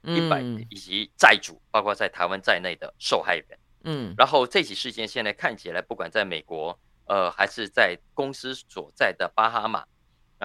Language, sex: Chinese, male